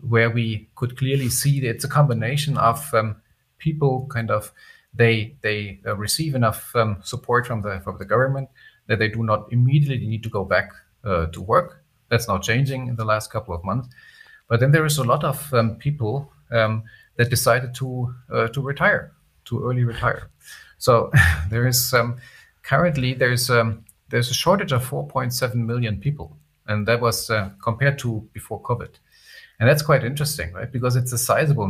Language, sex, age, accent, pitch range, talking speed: English, male, 40-59, German, 105-130 Hz, 185 wpm